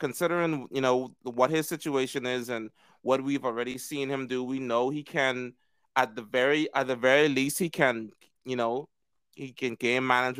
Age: 30-49